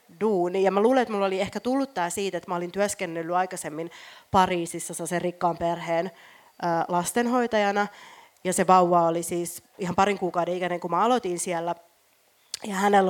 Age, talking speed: 30-49, 165 wpm